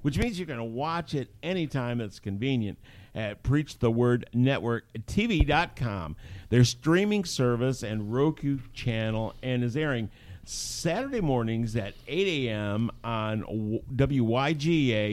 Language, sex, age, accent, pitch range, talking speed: English, male, 50-69, American, 110-140 Hz, 125 wpm